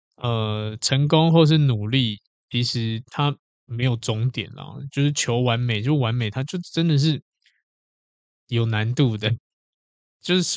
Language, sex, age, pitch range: Chinese, male, 20-39, 110-140 Hz